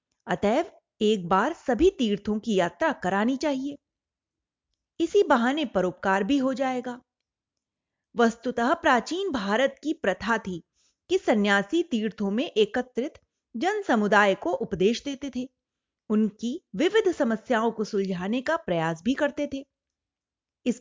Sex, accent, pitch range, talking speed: female, native, 205-290 Hz, 125 wpm